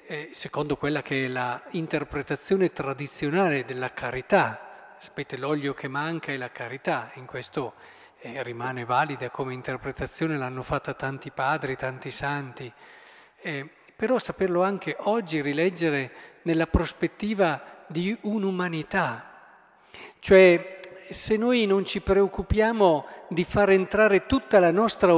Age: 50-69